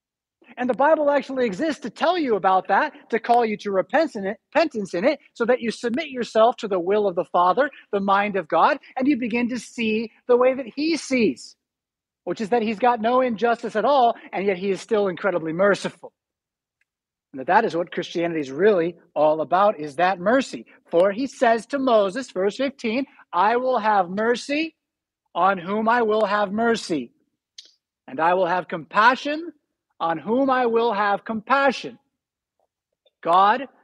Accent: American